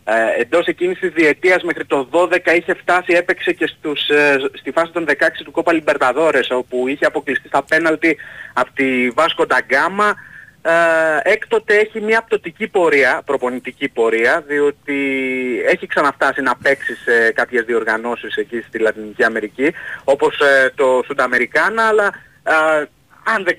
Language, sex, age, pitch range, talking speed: Greek, male, 30-49, 135-180 Hz, 135 wpm